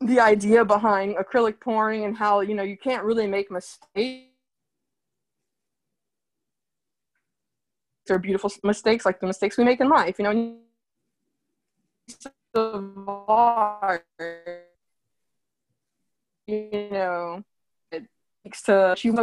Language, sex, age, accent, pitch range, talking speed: English, female, 20-39, American, 195-235 Hz, 105 wpm